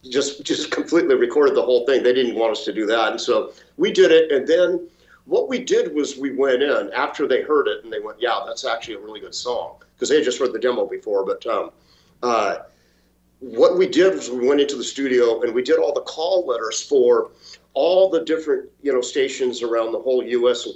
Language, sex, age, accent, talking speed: English, male, 50-69, American, 235 wpm